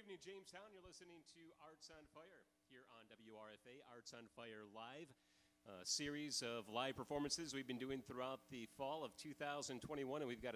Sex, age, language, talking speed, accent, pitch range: male, 30-49, English, 180 wpm, American, 120-145 Hz